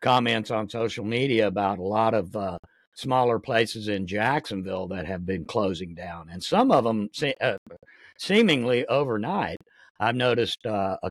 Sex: male